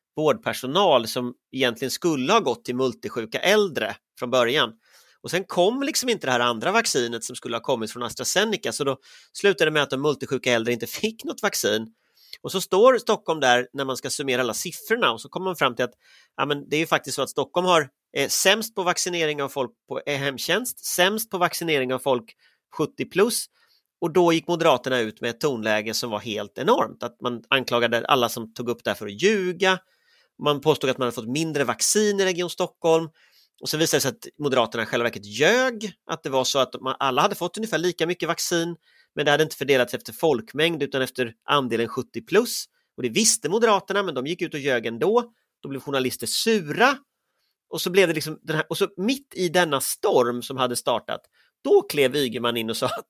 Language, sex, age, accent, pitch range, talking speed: English, male, 30-49, Swedish, 125-185 Hz, 210 wpm